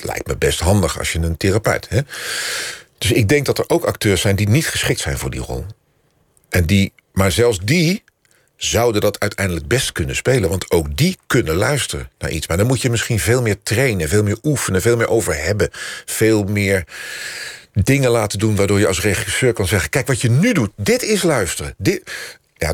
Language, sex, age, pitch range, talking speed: Dutch, male, 50-69, 90-125 Hz, 210 wpm